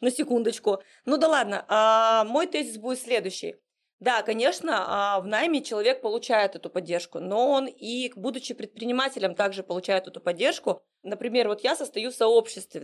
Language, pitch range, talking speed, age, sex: Russian, 205-265 Hz, 150 wpm, 20-39, female